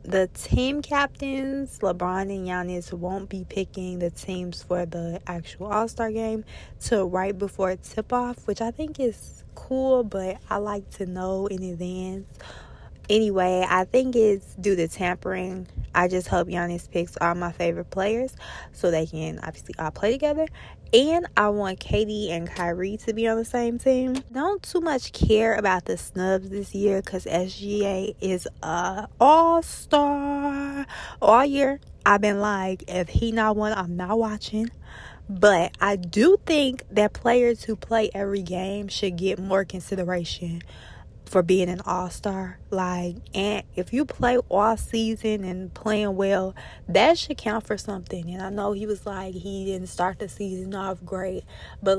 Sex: female